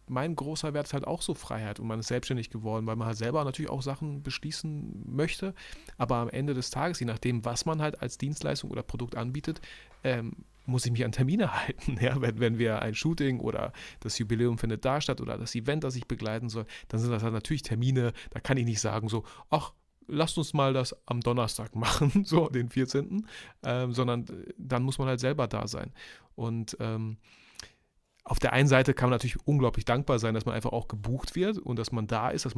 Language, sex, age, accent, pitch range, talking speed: German, male, 30-49, German, 115-135 Hz, 215 wpm